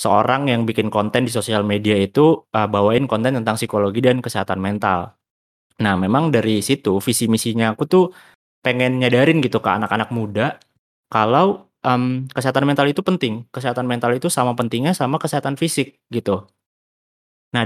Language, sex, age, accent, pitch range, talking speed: Indonesian, male, 20-39, native, 110-145 Hz, 155 wpm